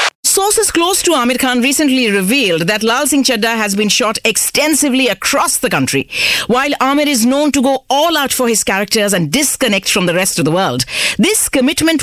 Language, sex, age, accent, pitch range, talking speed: English, female, 50-69, Indian, 195-285 Hz, 195 wpm